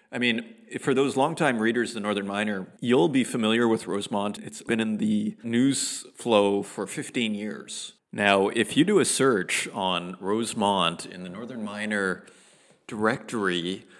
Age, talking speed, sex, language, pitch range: 40-59, 160 wpm, male, English, 105-130 Hz